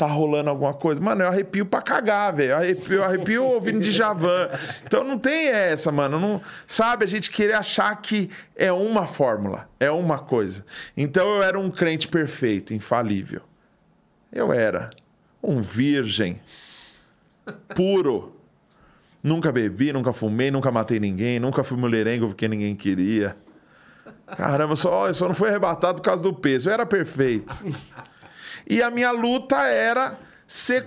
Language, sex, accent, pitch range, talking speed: Portuguese, male, Brazilian, 140-205 Hz, 155 wpm